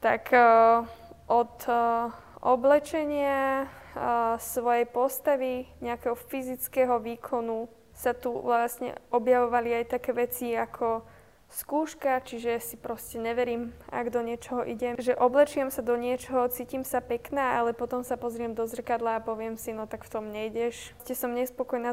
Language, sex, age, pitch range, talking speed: Slovak, female, 20-39, 230-255 Hz, 135 wpm